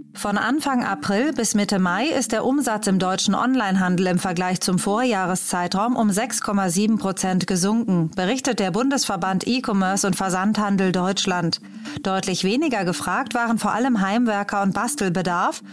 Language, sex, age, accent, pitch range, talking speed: German, female, 30-49, German, 185-230 Hz, 135 wpm